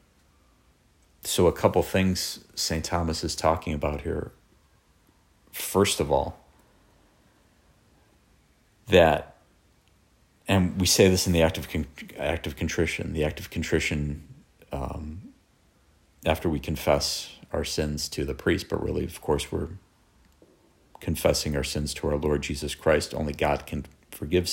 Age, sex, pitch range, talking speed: 40-59, male, 75-85 Hz, 130 wpm